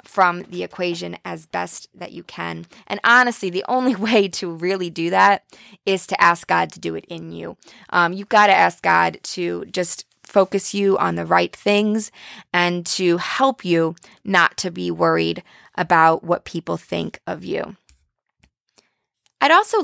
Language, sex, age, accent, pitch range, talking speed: English, female, 20-39, American, 165-210 Hz, 170 wpm